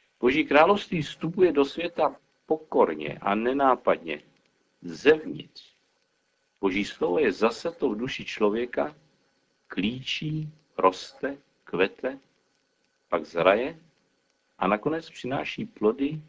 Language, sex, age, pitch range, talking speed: Czech, male, 50-69, 100-145 Hz, 95 wpm